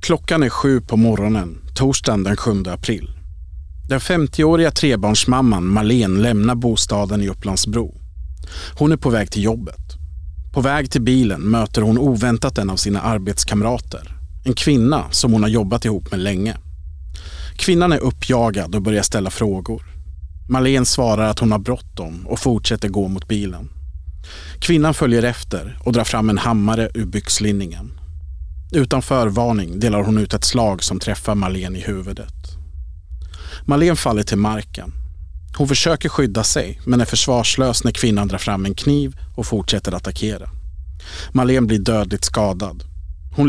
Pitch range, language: 95-120 Hz, Swedish